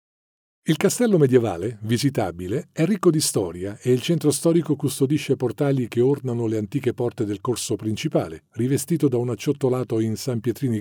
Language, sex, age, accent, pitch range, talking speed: Italian, male, 50-69, native, 120-165 Hz, 160 wpm